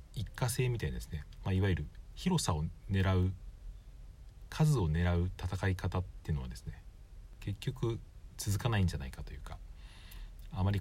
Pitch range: 80-100 Hz